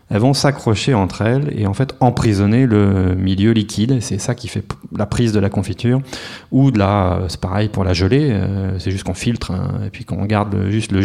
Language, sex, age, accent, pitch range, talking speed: French, male, 30-49, French, 100-120 Hz, 210 wpm